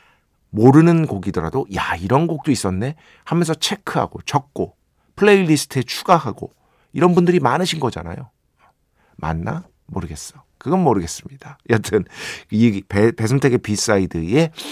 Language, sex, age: Korean, male, 50-69